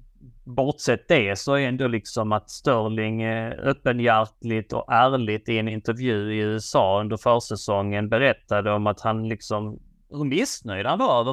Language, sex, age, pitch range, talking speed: Swedish, male, 30-49, 110-140 Hz, 130 wpm